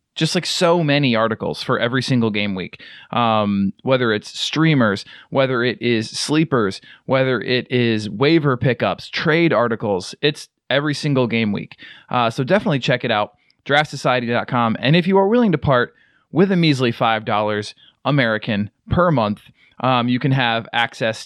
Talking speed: 160 wpm